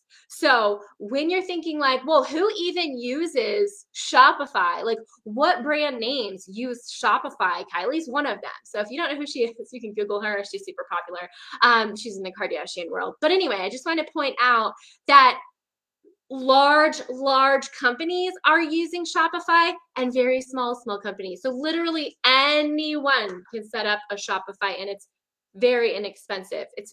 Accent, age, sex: American, 10-29, female